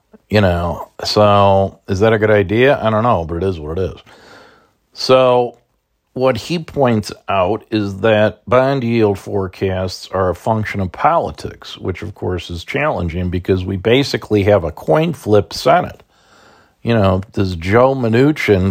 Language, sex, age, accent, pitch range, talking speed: English, male, 50-69, American, 90-110 Hz, 160 wpm